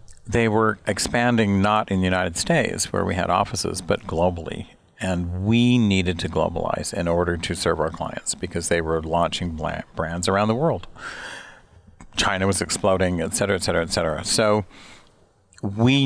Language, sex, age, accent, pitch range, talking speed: German, male, 50-69, American, 85-100 Hz, 165 wpm